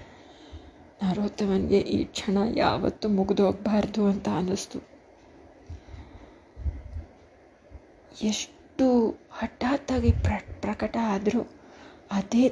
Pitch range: 200-275 Hz